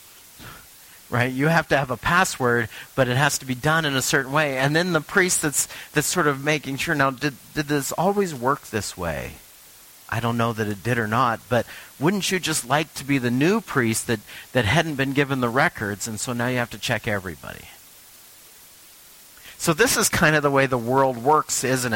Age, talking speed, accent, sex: 40-59, 215 wpm, American, male